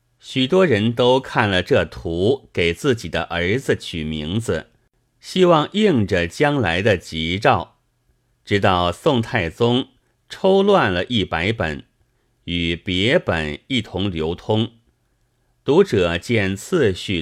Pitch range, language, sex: 90-125 Hz, Chinese, male